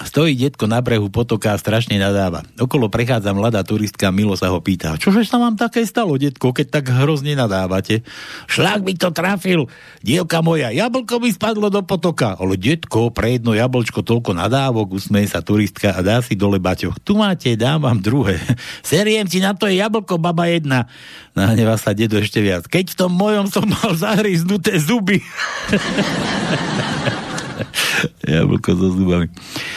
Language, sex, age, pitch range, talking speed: Slovak, male, 60-79, 105-155 Hz, 165 wpm